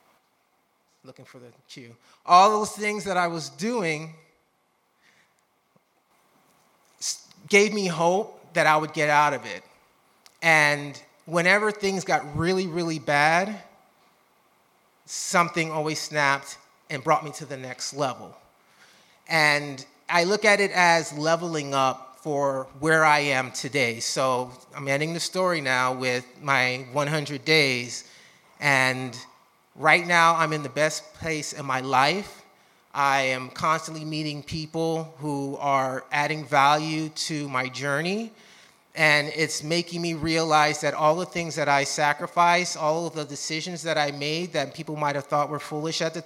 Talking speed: 145 wpm